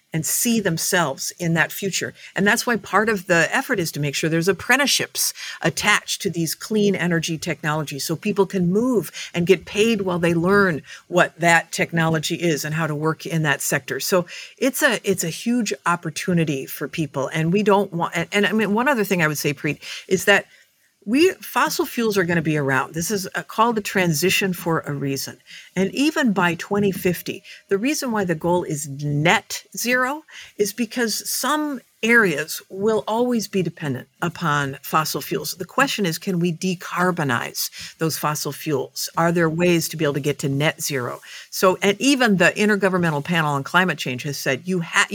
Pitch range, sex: 160-205 Hz, female